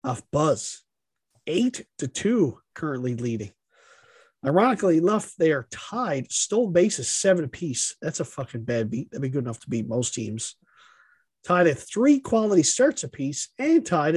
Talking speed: 155 wpm